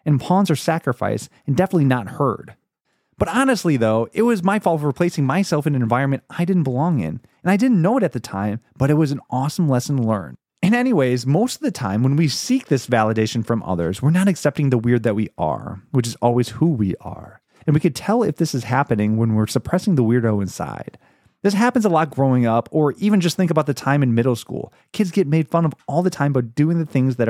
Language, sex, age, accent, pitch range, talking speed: English, male, 30-49, American, 125-175 Hz, 240 wpm